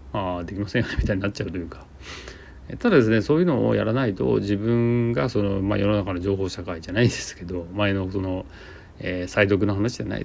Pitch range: 90-130 Hz